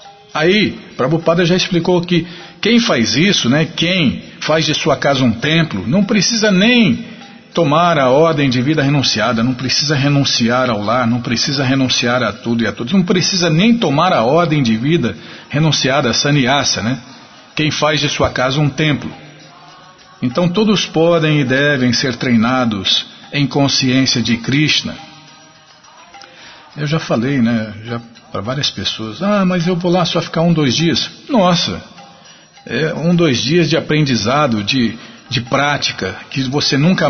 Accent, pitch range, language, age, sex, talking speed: Brazilian, 125-165 Hz, Portuguese, 50-69, male, 155 wpm